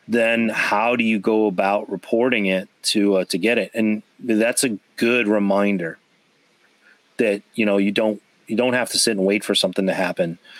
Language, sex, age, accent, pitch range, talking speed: English, male, 30-49, American, 95-110 Hz, 195 wpm